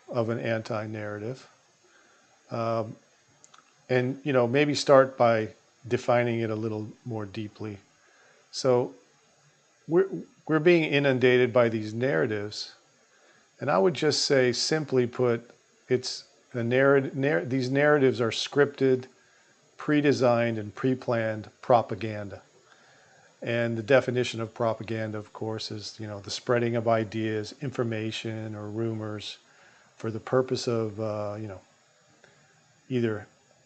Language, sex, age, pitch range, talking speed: English, male, 50-69, 110-130 Hz, 120 wpm